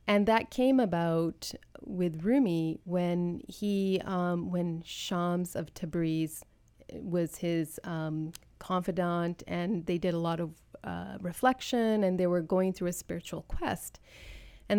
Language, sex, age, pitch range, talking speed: English, female, 30-49, 170-190 Hz, 140 wpm